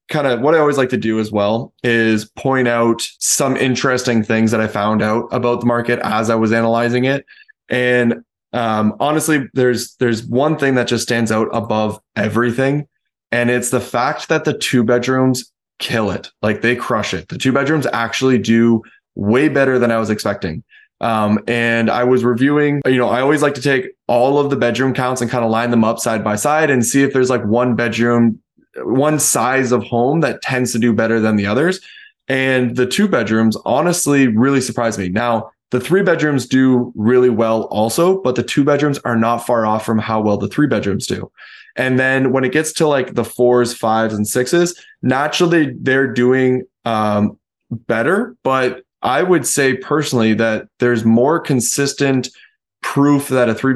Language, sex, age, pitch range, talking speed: English, male, 20-39, 115-135 Hz, 190 wpm